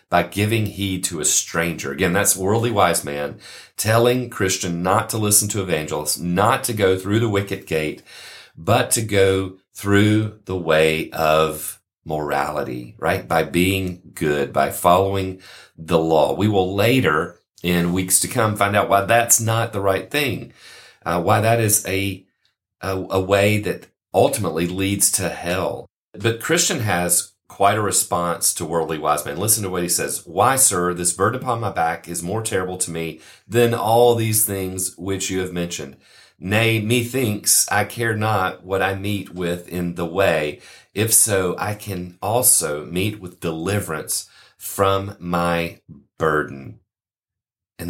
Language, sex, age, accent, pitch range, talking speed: English, male, 40-59, American, 85-105 Hz, 160 wpm